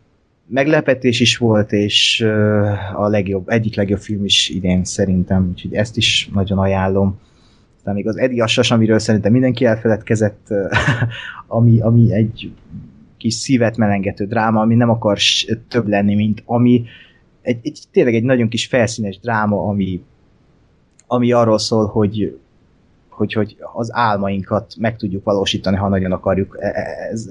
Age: 30-49